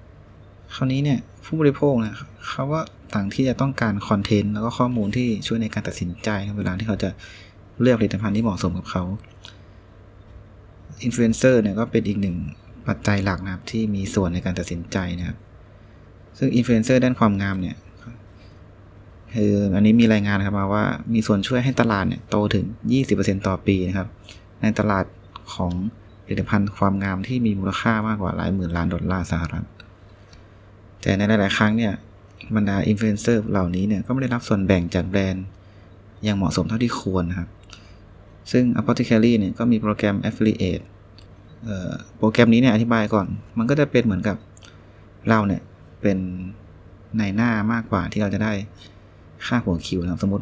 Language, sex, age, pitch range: Thai, male, 20-39, 95-115 Hz